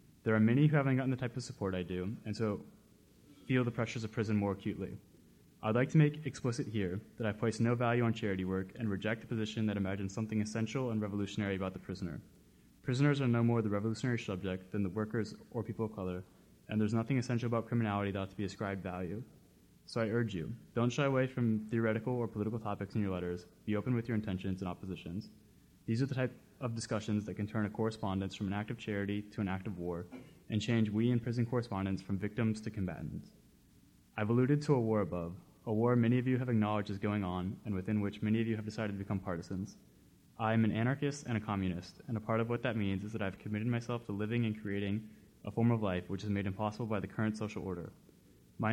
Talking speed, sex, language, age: 235 wpm, male, English, 20-39